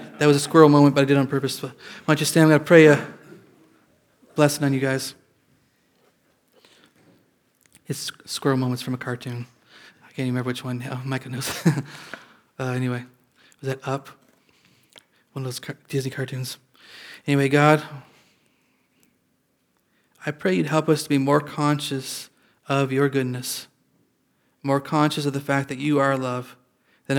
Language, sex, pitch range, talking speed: English, male, 130-145 Hz, 160 wpm